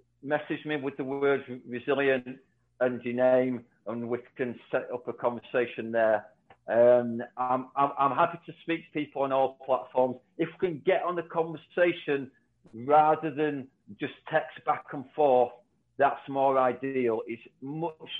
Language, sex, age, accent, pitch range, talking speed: English, male, 40-59, British, 120-145 Hz, 160 wpm